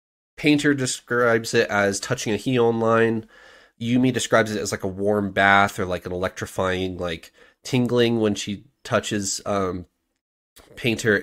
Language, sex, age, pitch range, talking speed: English, male, 20-39, 95-120 Hz, 145 wpm